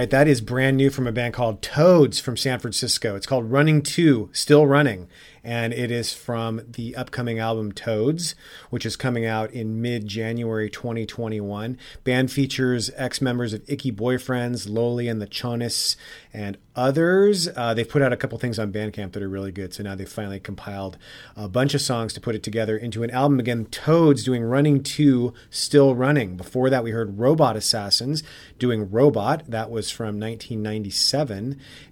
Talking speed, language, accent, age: 175 wpm, English, American, 30-49